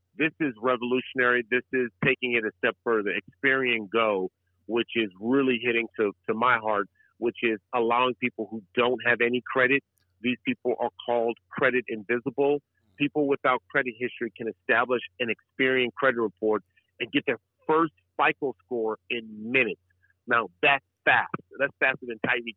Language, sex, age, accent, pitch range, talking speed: English, male, 40-59, American, 115-140 Hz, 160 wpm